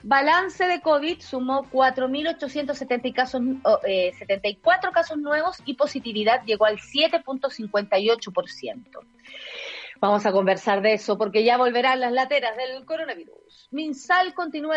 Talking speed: 105 wpm